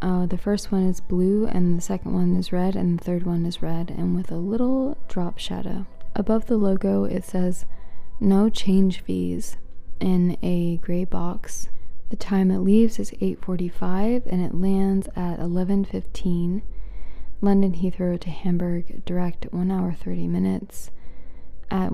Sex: female